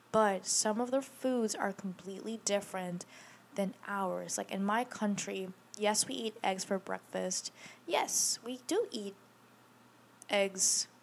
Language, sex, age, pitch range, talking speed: English, female, 10-29, 195-240 Hz, 135 wpm